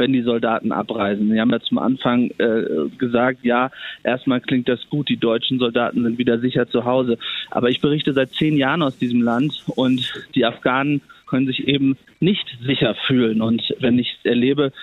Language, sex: German, male